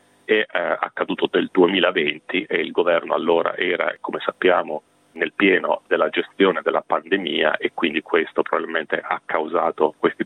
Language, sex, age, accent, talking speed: Italian, male, 40-59, native, 140 wpm